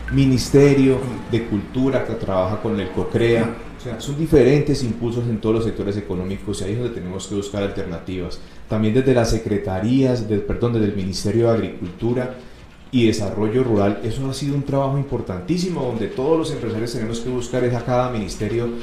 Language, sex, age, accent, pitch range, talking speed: Spanish, male, 30-49, Colombian, 105-130 Hz, 180 wpm